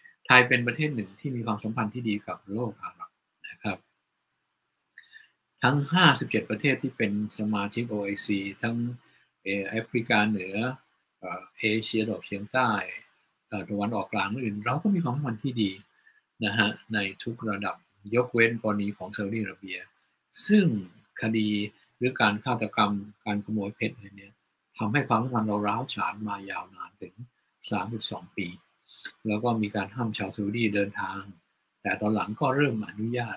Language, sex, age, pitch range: Thai, male, 60-79, 100-120 Hz